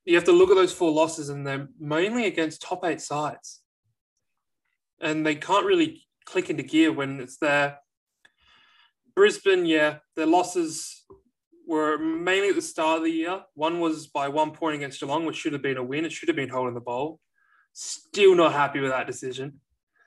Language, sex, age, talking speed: English, male, 20-39, 190 wpm